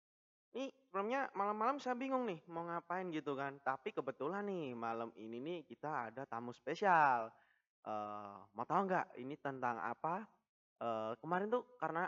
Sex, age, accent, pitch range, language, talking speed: male, 20-39, native, 115-190 Hz, Indonesian, 150 wpm